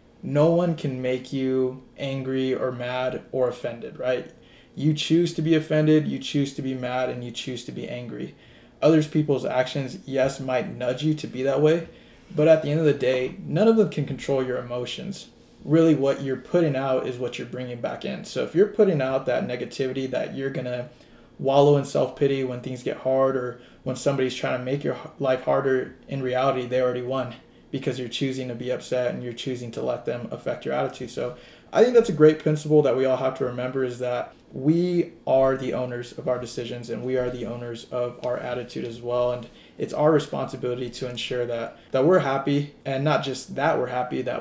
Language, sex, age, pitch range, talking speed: English, male, 20-39, 125-145 Hz, 215 wpm